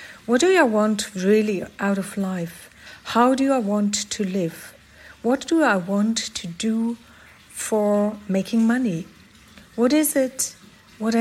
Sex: female